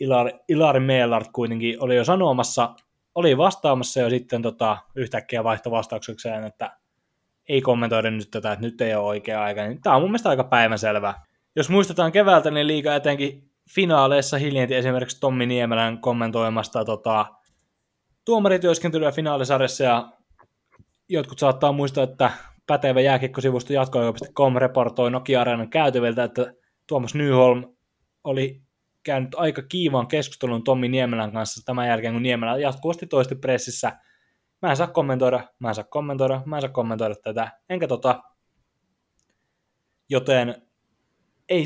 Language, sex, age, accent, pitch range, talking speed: Finnish, male, 20-39, native, 115-145 Hz, 135 wpm